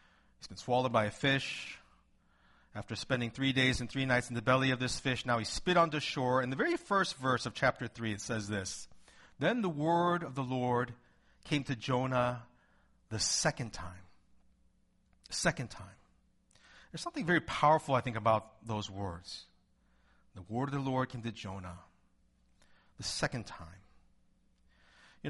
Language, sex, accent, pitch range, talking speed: English, male, American, 105-150 Hz, 170 wpm